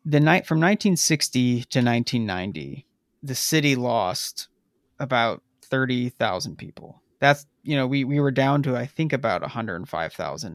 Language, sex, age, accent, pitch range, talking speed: English, male, 30-49, American, 125-150 Hz, 135 wpm